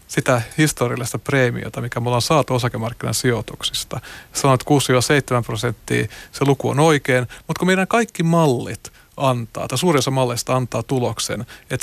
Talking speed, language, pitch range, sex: 145 wpm, Finnish, 120-160 Hz, male